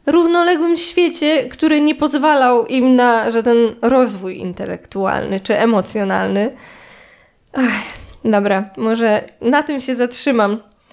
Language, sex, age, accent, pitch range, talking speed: Polish, female, 20-39, native, 215-290 Hz, 100 wpm